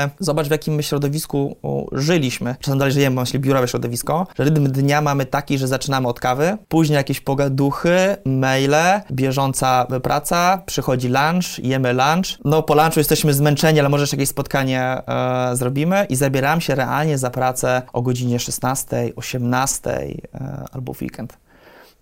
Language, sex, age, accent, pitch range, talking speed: Polish, male, 20-39, native, 130-155 Hz, 145 wpm